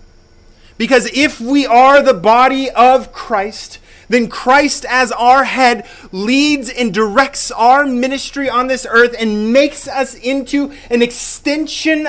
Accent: American